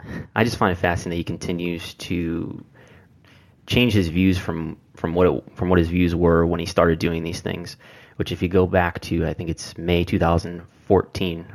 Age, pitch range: 20-39, 85-95 Hz